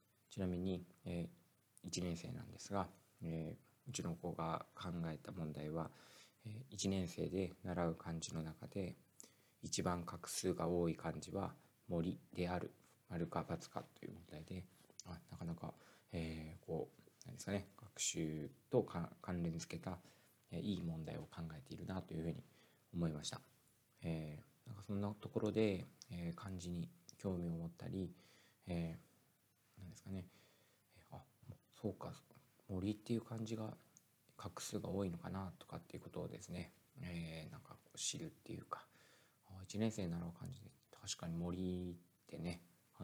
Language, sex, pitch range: Japanese, male, 85-100 Hz